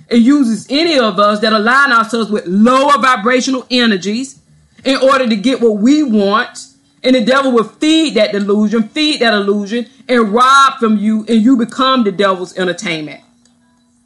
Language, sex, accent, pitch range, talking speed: English, female, American, 205-260 Hz, 165 wpm